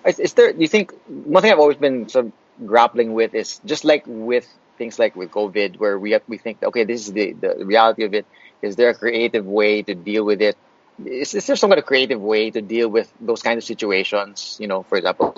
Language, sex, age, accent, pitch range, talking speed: English, male, 30-49, Filipino, 105-135 Hz, 245 wpm